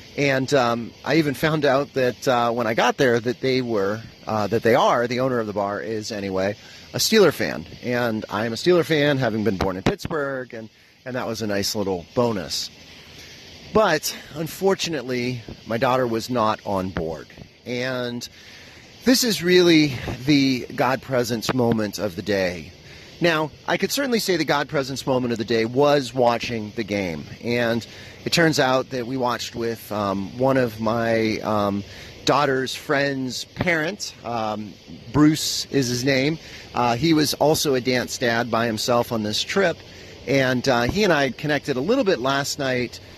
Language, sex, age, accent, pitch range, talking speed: English, male, 30-49, American, 110-140 Hz, 175 wpm